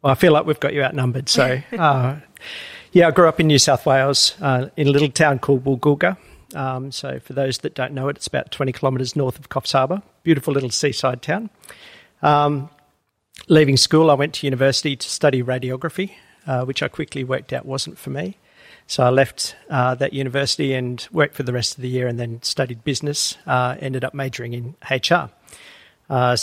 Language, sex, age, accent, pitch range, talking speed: English, male, 50-69, Australian, 130-150 Hz, 200 wpm